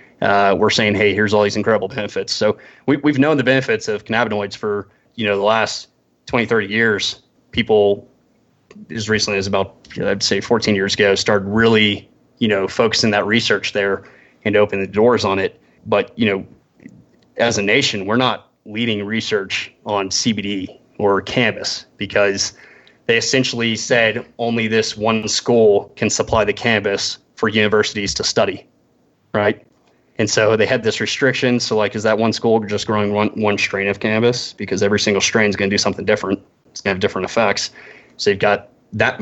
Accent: American